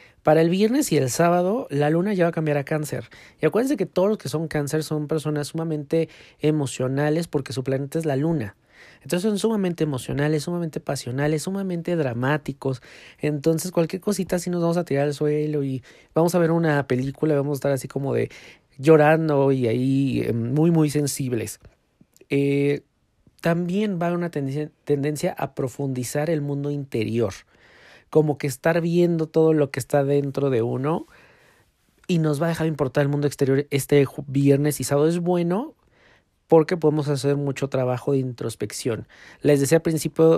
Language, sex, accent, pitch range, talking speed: Spanish, male, Mexican, 135-165 Hz, 170 wpm